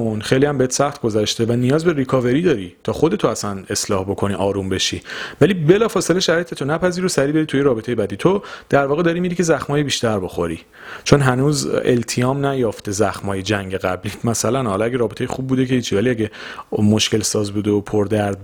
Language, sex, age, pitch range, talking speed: Persian, male, 40-59, 105-135 Hz, 190 wpm